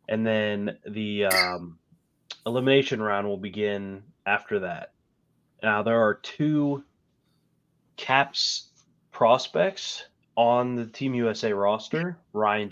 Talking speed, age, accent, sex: 105 wpm, 20-39, American, male